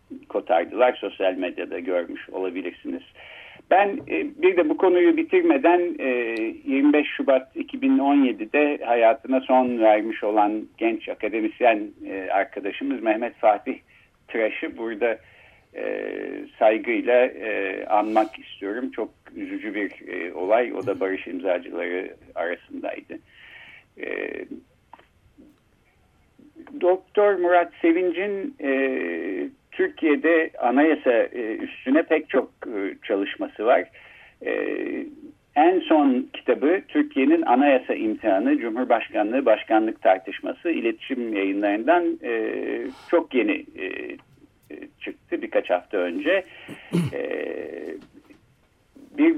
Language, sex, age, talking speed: Turkish, male, 60-79, 80 wpm